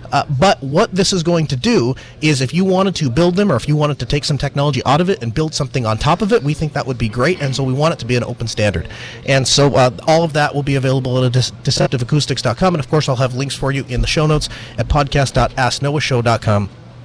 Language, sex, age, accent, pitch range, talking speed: English, male, 30-49, American, 125-170 Hz, 270 wpm